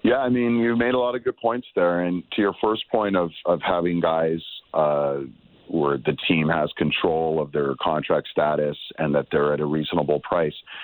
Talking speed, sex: 205 wpm, male